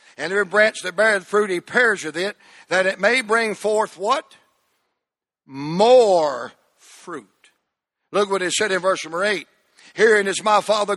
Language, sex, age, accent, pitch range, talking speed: English, male, 60-79, American, 190-225 Hz, 160 wpm